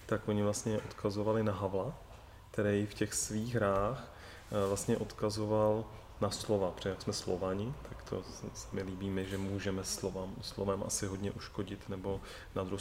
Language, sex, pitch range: Czech, male, 100-115 Hz